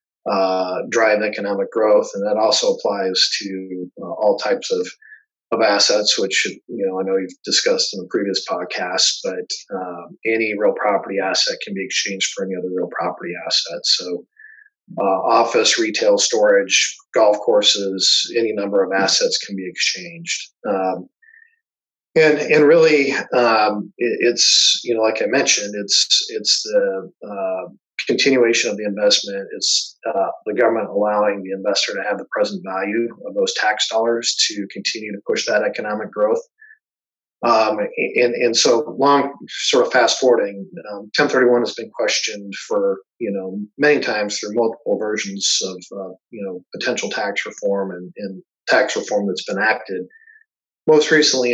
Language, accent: English, American